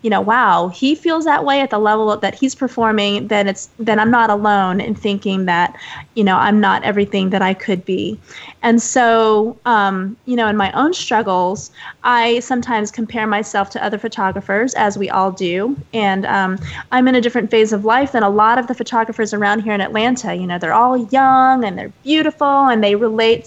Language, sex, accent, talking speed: English, female, American, 205 wpm